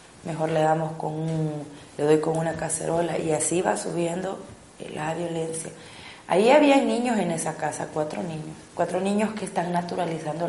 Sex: female